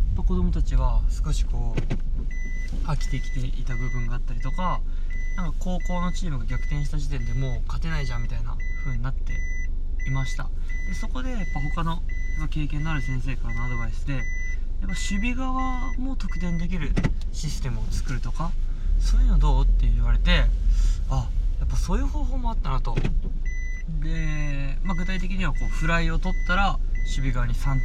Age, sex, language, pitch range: 20-39, male, Japanese, 105-165 Hz